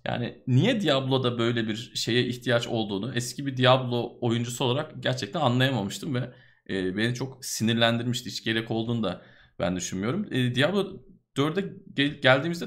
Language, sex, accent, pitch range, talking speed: Turkish, male, native, 115-145 Hz, 135 wpm